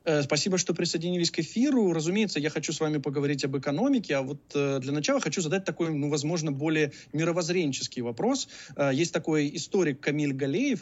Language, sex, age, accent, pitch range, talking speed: Russian, male, 20-39, native, 135-175 Hz, 165 wpm